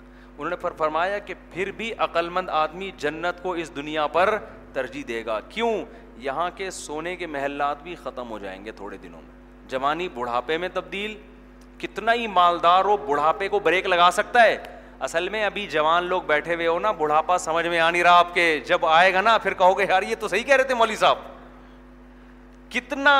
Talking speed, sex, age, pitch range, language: 200 wpm, male, 30-49, 160-205 Hz, Urdu